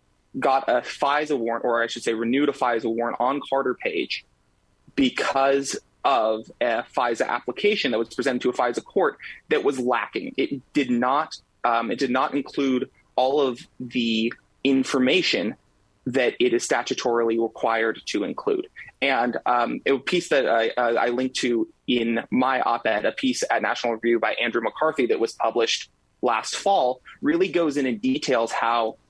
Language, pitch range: English, 120-175 Hz